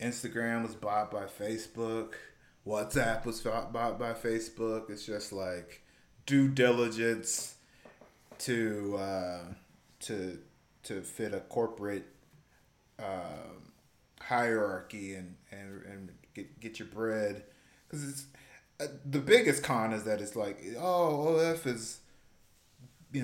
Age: 20-39